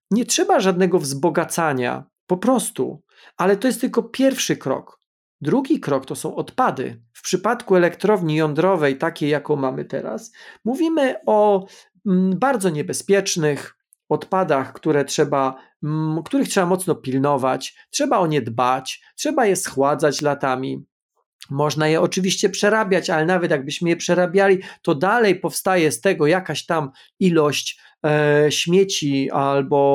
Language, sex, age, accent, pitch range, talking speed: Polish, male, 40-59, native, 145-195 Hz, 120 wpm